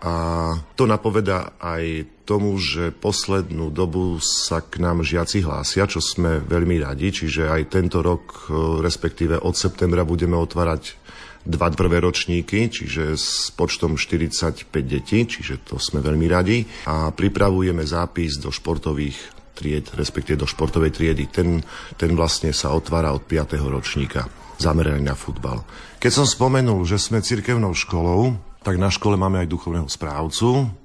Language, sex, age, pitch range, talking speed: Slovak, male, 50-69, 75-90 Hz, 145 wpm